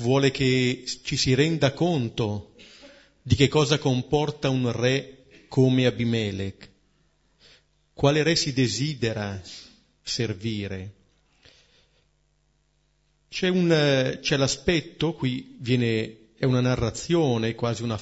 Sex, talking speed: male, 100 wpm